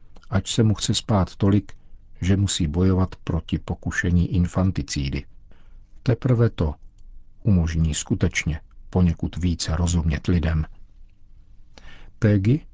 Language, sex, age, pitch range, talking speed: Czech, male, 50-69, 85-100 Hz, 100 wpm